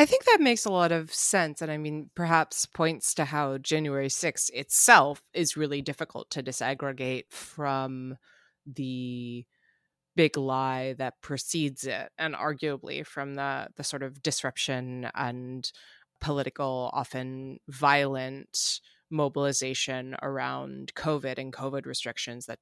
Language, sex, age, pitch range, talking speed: English, female, 20-39, 135-170 Hz, 130 wpm